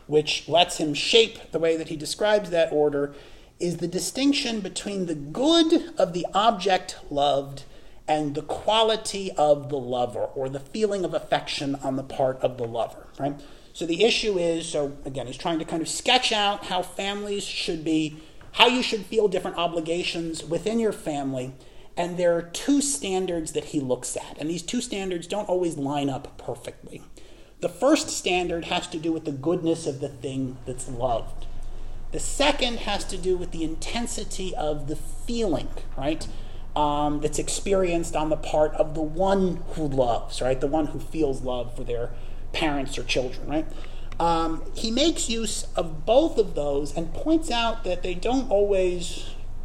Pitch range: 145-200 Hz